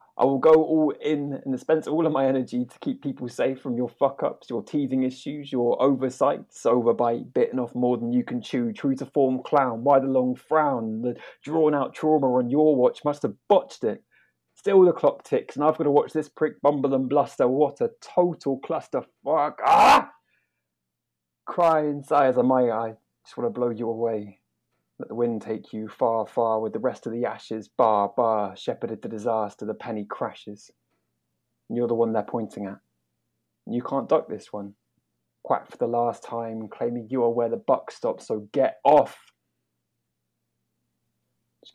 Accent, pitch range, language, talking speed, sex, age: British, 110-150 Hz, English, 190 wpm, male, 20-39